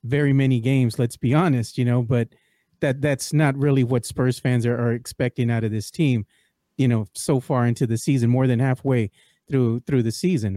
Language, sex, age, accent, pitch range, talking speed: English, male, 40-59, American, 120-150 Hz, 210 wpm